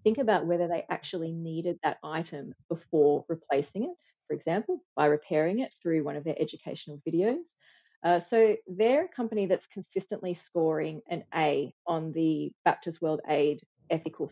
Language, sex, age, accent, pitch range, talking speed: English, female, 30-49, Australian, 160-195 Hz, 160 wpm